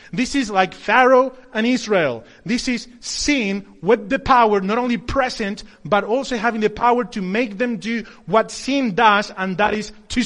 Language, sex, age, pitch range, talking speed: English, male, 30-49, 200-240 Hz, 180 wpm